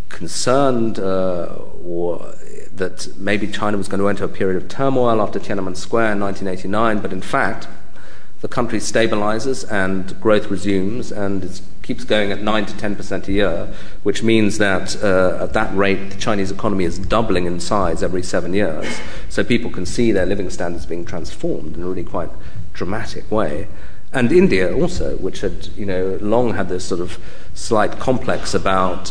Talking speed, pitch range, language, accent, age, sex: 175 wpm, 95-105 Hz, English, British, 40-59, male